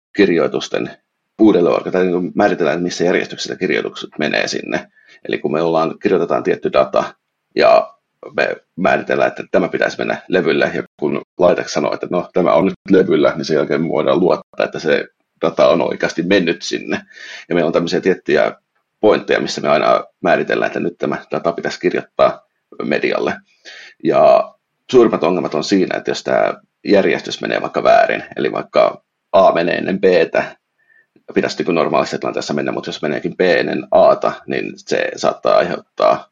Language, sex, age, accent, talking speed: Finnish, male, 30-49, native, 165 wpm